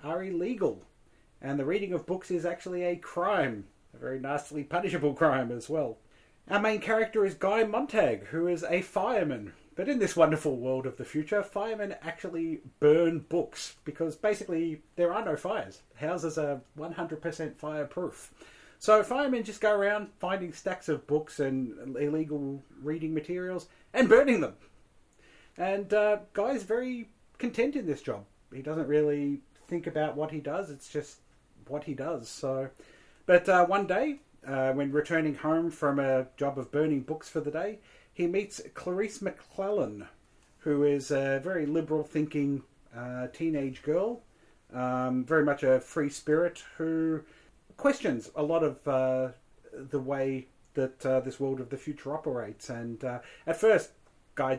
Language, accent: English, Australian